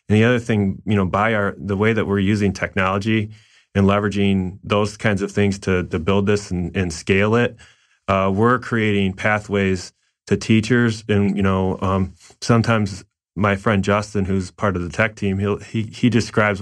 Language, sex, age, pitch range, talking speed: English, male, 30-49, 95-110 Hz, 190 wpm